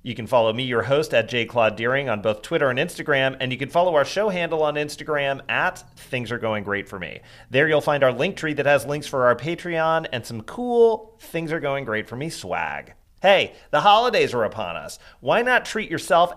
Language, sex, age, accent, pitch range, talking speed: English, male, 40-59, American, 115-160 Hz, 230 wpm